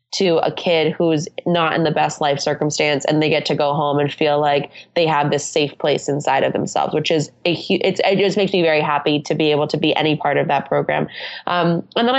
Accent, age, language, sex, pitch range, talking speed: American, 20-39, English, female, 160-185 Hz, 245 wpm